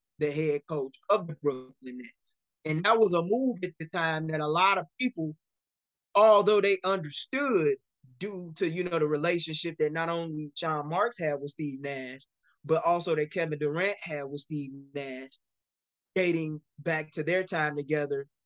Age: 20-39